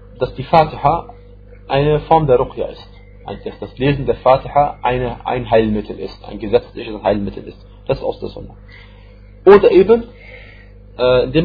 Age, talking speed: 40-59, 150 wpm